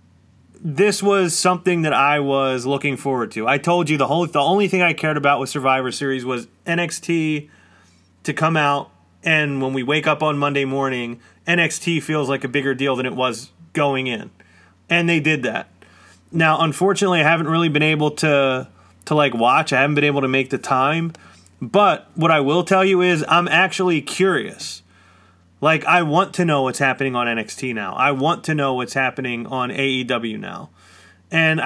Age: 30-49